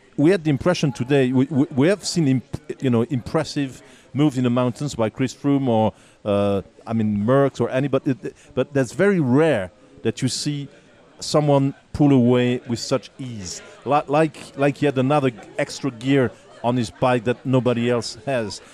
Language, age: English, 40-59